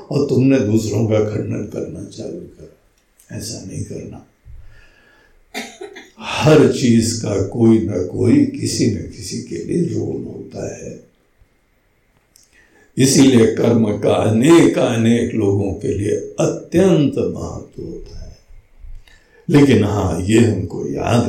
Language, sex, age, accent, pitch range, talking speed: Hindi, male, 60-79, native, 110-130 Hz, 115 wpm